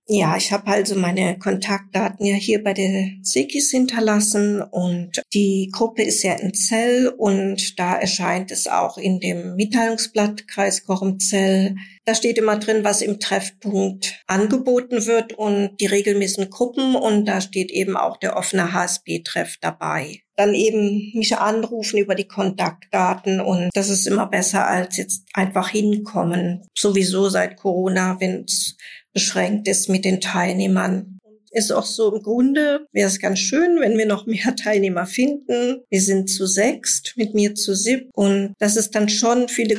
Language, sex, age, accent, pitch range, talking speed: German, female, 50-69, German, 195-220 Hz, 160 wpm